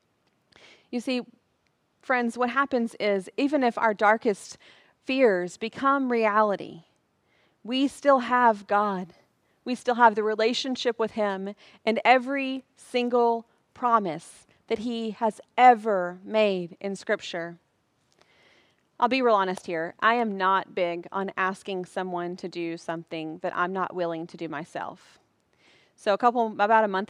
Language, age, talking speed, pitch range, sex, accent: English, 30-49, 140 wpm, 180-220 Hz, female, American